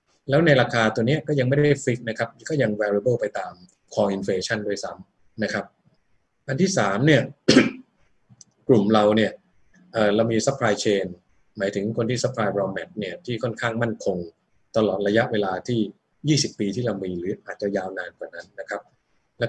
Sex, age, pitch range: male, 20-39, 105-125 Hz